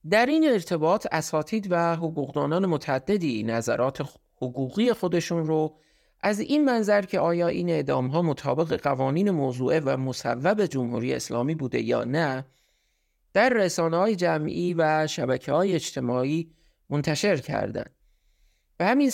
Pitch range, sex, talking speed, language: 150-200 Hz, male, 120 wpm, Persian